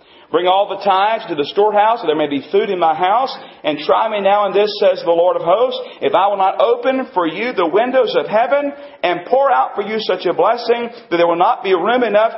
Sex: male